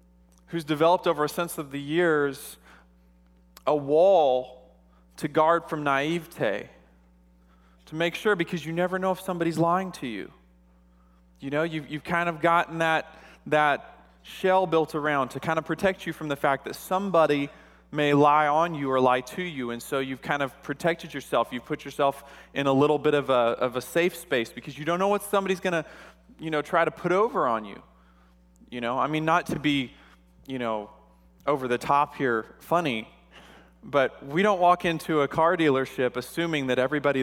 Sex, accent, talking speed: male, American, 185 wpm